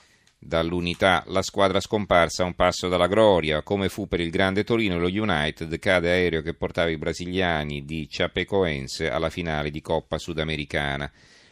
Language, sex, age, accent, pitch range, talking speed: Italian, male, 40-59, native, 80-100 Hz, 160 wpm